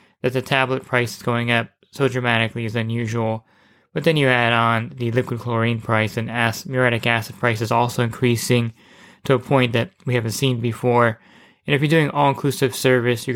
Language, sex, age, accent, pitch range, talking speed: English, male, 20-39, American, 115-130 Hz, 190 wpm